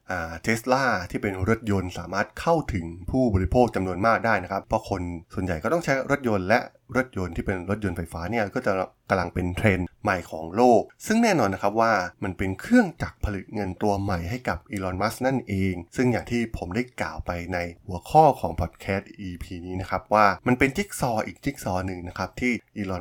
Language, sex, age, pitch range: Thai, male, 20-39, 95-120 Hz